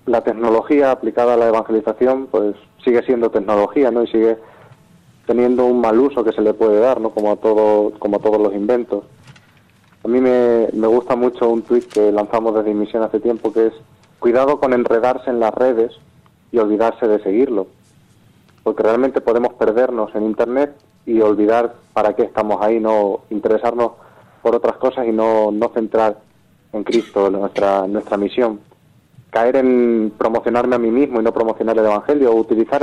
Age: 20-39